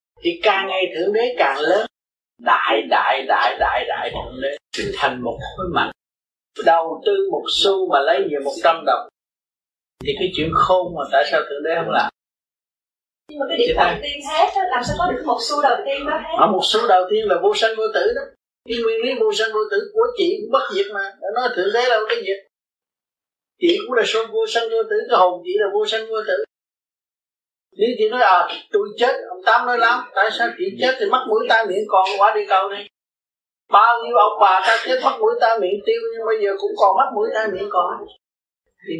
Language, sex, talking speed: Vietnamese, male, 220 wpm